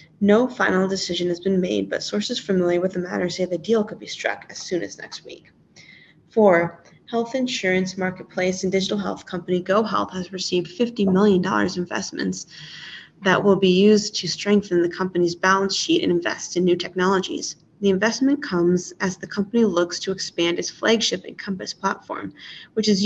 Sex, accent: female, American